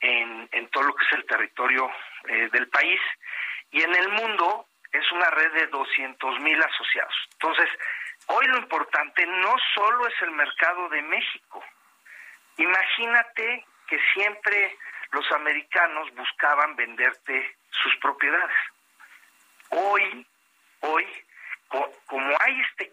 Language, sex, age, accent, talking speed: Spanish, male, 50-69, Mexican, 125 wpm